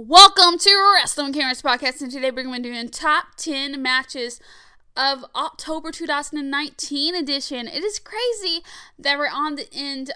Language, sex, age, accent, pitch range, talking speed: English, female, 10-29, American, 230-305 Hz, 160 wpm